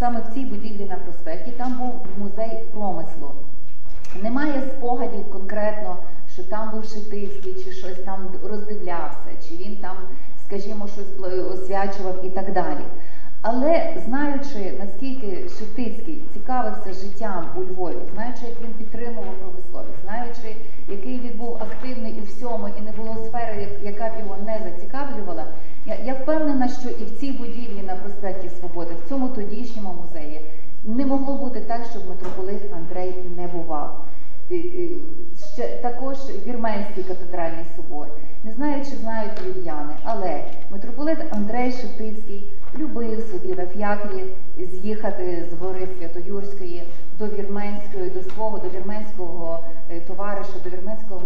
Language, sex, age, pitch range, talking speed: Ukrainian, female, 30-49, 185-235 Hz, 135 wpm